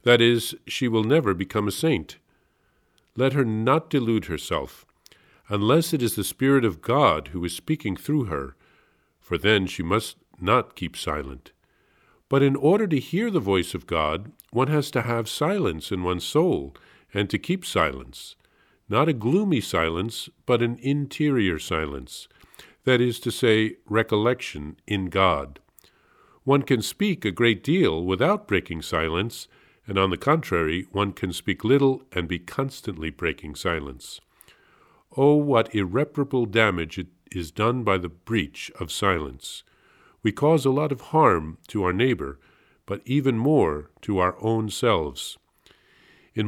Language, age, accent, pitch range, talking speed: English, 50-69, American, 95-140 Hz, 150 wpm